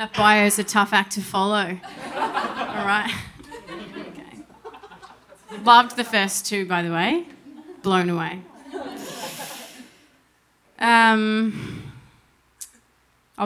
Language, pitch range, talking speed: English, 180-210 Hz, 95 wpm